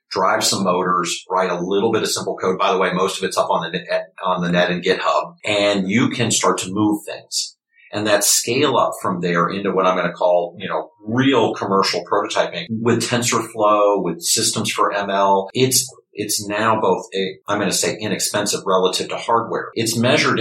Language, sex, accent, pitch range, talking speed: English, male, American, 100-115 Hz, 205 wpm